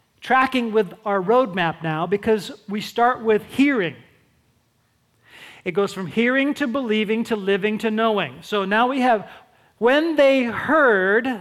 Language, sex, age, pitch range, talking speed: English, male, 40-59, 205-280 Hz, 140 wpm